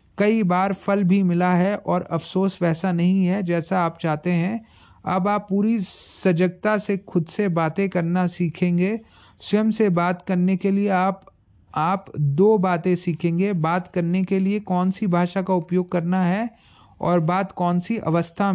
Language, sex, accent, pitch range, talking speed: Hindi, male, native, 170-190 Hz, 170 wpm